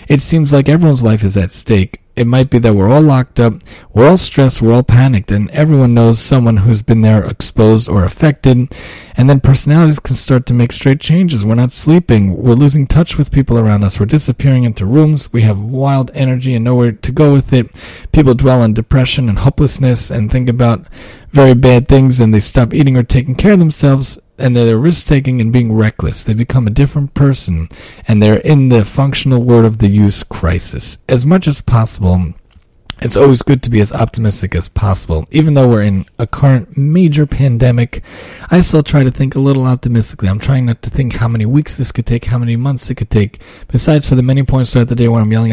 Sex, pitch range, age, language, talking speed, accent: male, 110-135 Hz, 40-59, English, 215 wpm, American